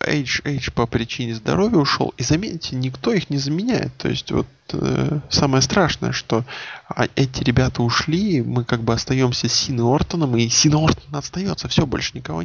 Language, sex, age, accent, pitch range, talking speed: Russian, male, 20-39, native, 120-145 Hz, 165 wpm